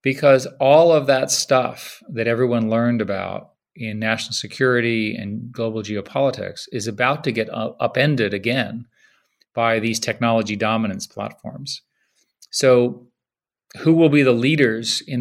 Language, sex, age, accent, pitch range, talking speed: English, male, 40-59, American, 110-140 Hz, 130 wpm